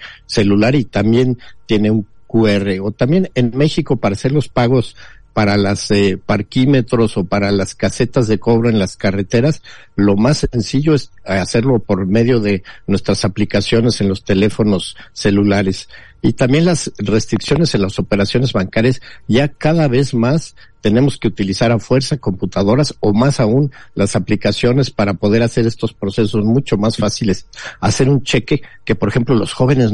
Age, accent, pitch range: 50-69, Mexican, 105-130 Hz